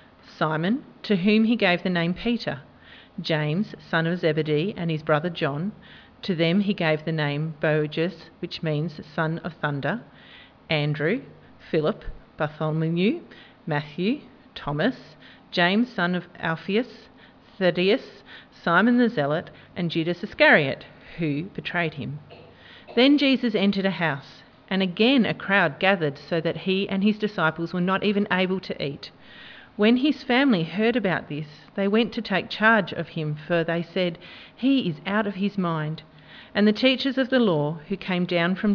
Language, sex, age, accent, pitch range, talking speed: English, female, 40-59, Australian, 160-225 Hz, 155 wpm